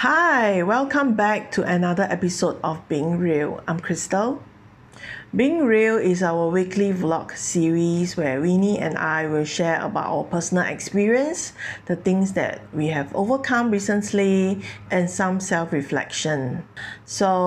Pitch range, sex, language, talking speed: 155-200 Hz, female, English, 135 wpm